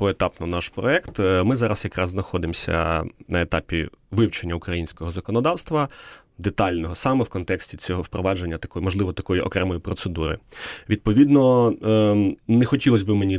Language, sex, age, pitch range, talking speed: Ukrainian, male, 30-49, 90-115 Hz, 125 wpm